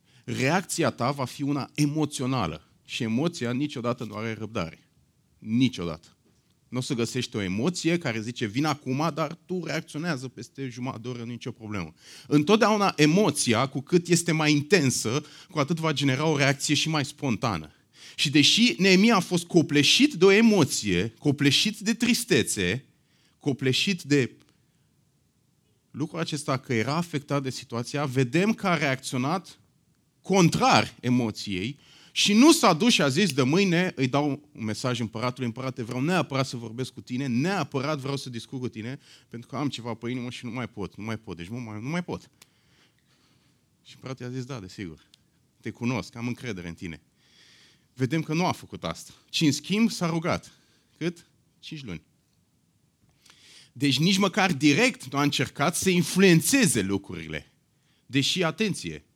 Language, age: Romanian, 30-49